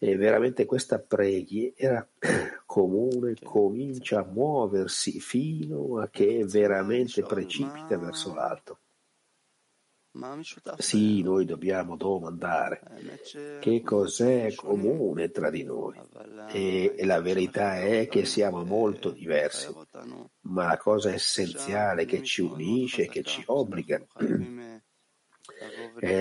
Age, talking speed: 50-69, 100 wpm